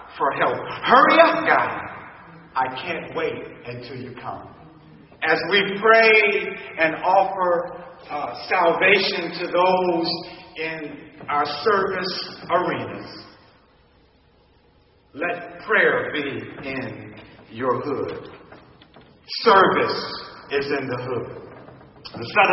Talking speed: 100 wpm